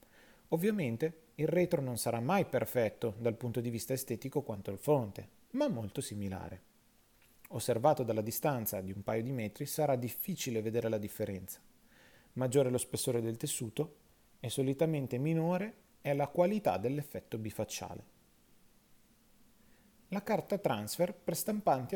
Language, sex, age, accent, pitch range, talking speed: Italian, male, 30-49, native, 105-150 Hz, 135 wpm